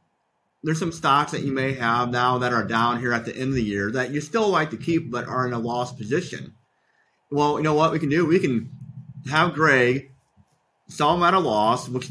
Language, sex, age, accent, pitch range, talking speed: English, male, 30-49, American, 125-155 Hz, 235 wpm